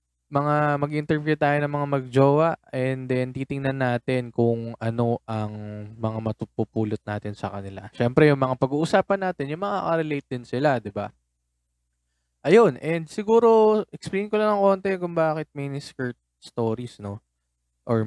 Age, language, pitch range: 20-39, Filipino, 105-145 Hz